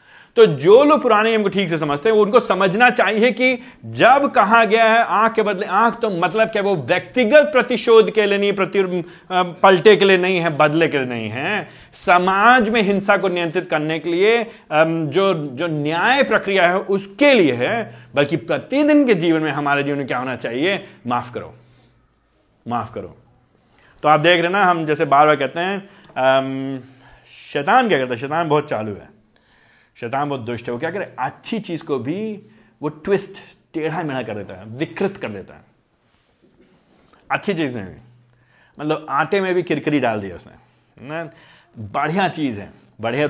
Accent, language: native, Hindi